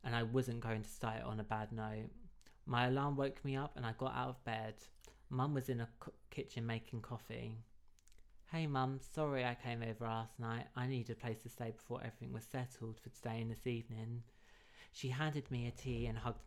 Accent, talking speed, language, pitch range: British, 215 wpm, English, 115-135 Hz